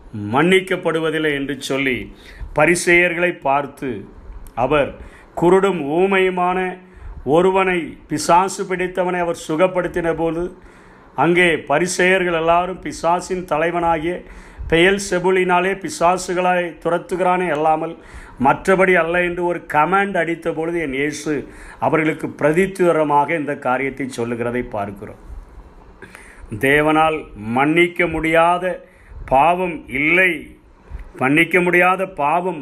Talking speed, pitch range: 85 wpm, 140-180 Hz